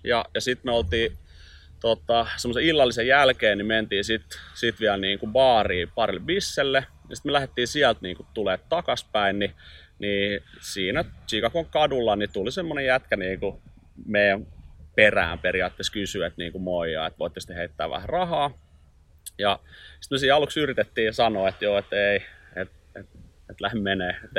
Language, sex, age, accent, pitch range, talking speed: Finnish, male, 30-49, native, 95-130 Hz, 155 wpm